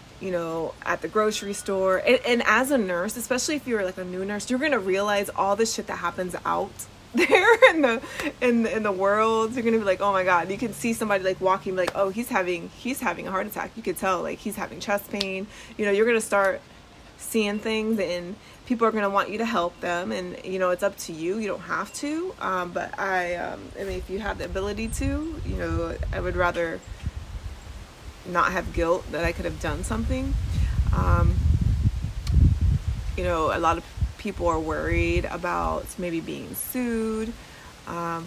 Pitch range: 175-225 Hz